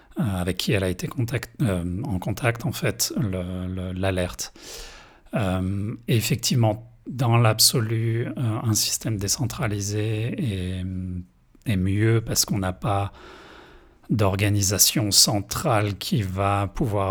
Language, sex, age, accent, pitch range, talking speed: French, male, 40-59, French, 95-115 Hz, 105 wpm